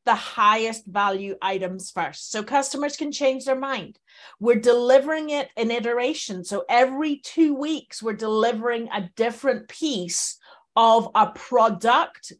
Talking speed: 135 wpm